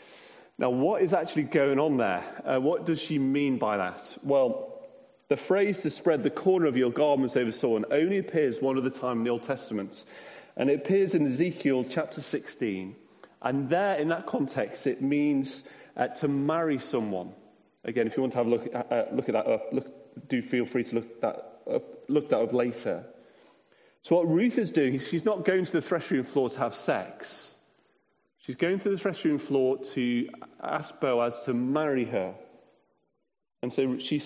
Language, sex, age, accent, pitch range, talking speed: English, male, 30-49, British, 125-170 Hz, 185 wpm